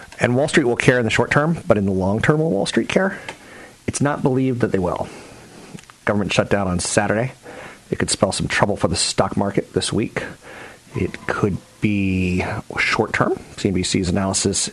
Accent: American